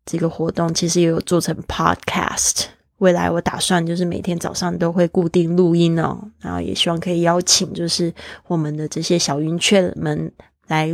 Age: 20-39